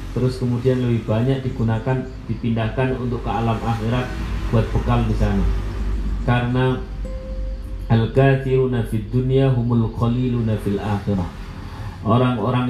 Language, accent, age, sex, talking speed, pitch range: Indonesian, native, 40-59, male, 100 wpm, 105-130 Hz